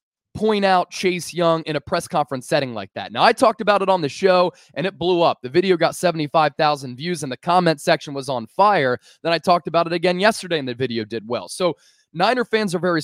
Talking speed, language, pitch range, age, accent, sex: 240 wpm, English, 150-190 Hz, 20-39, American, male